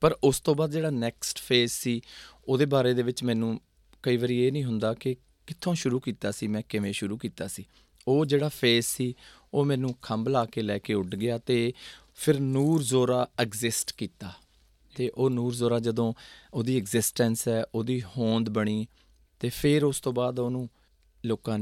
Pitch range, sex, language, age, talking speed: 110-135 Hz, male, Punjabi, 20-39, 180 wpm